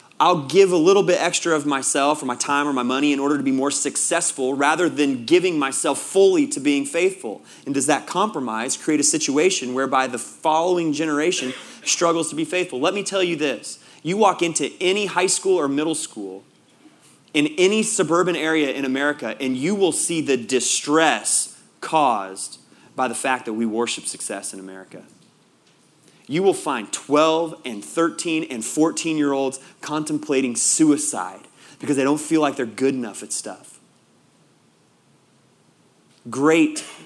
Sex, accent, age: male, American, 30-49